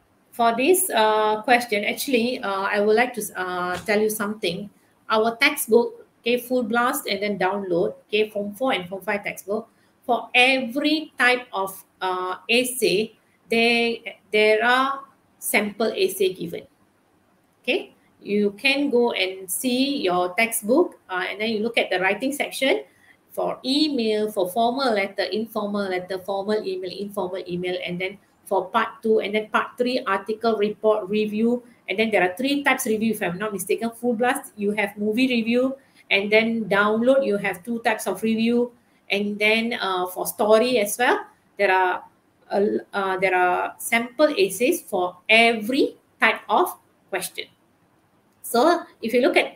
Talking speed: 160 wpm